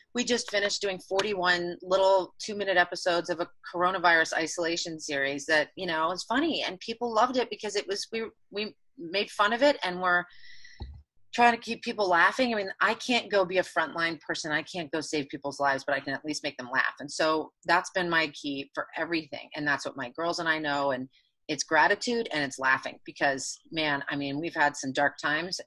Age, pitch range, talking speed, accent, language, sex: 30-49, 150-195 Hz, 215 wpm, American, English, female